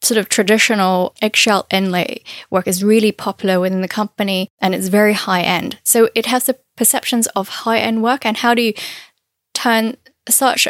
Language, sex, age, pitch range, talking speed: English, female, 10-29, 195-235 Hz, 180 wpm